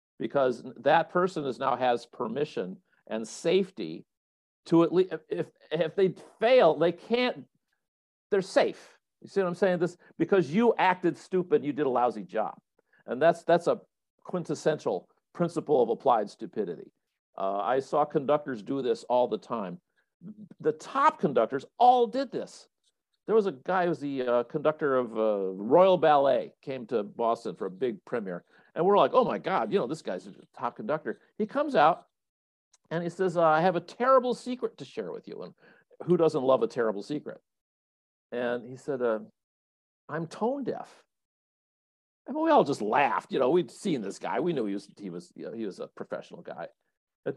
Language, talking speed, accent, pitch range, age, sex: English, 180 wpm, American, 130-190 Hz, 50-69, male